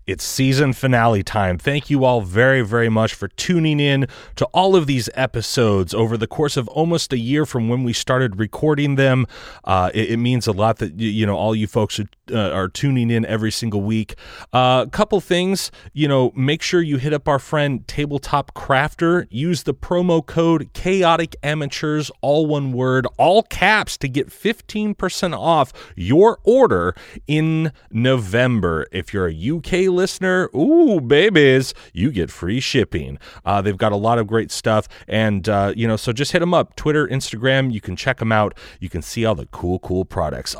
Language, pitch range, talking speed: English, 110-150 Hz, 190 wpm